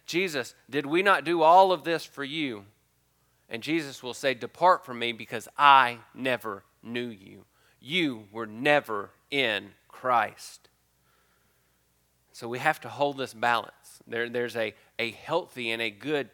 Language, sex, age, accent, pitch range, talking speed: English, male, 30-49, American, 115-150 Hz, 155 wpm